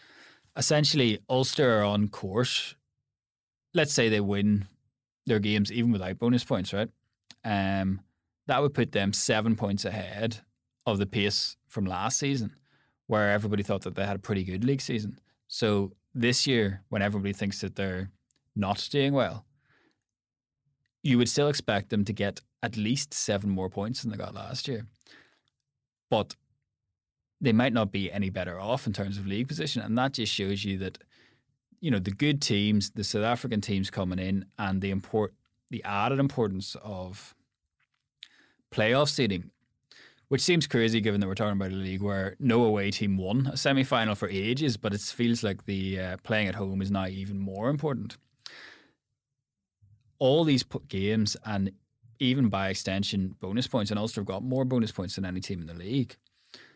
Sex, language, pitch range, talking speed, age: male, English, 100-125 Hz, 170 wpm, 20-39